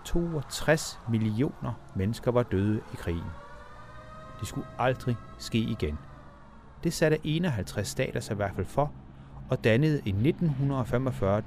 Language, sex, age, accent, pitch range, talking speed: Danish, male, 30-49, native, 95-135 Hz, 130 wpm